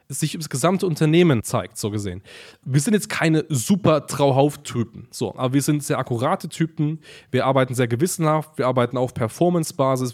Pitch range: 125-155 Hz